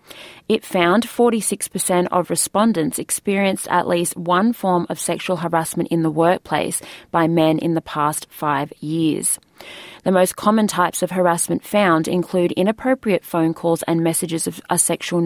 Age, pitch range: 20-39, 170-195 Hz